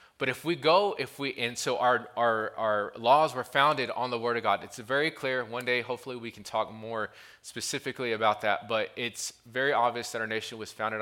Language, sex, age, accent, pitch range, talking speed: English, male, 20-39, American, 110-130 Hz, 225 wpm